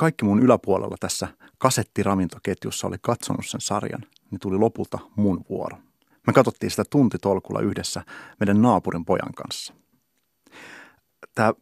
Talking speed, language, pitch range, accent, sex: 125 wpm, Finnish, 95-125 Hz, native, male